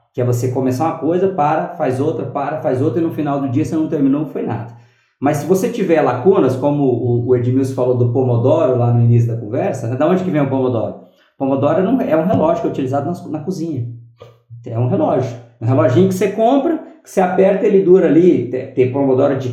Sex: male